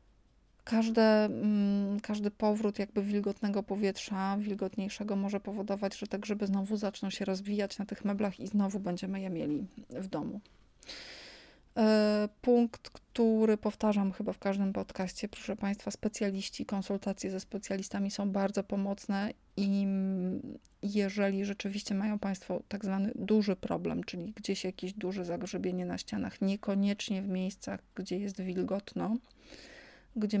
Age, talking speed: 30-49, 125 wpm